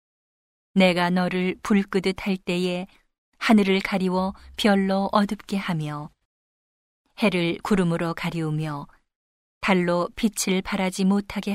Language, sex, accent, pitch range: Korean, female, native, 165-195 Hz